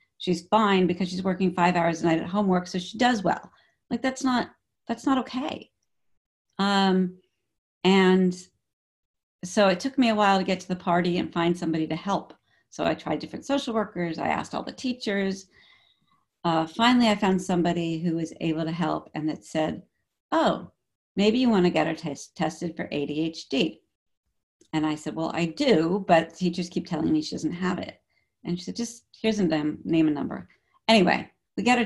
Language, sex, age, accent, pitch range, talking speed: English, female, 50-69, American, 160-210 Hz, 195 wpm